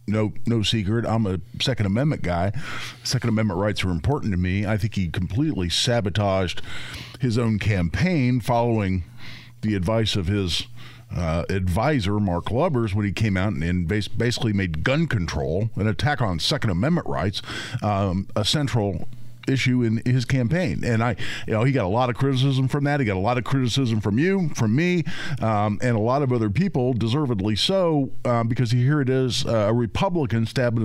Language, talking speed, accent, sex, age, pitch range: English, 185 wpm, American, male, 50-69, 105-135 Hz